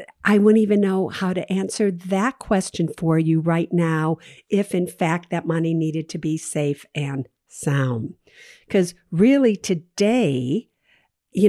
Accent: American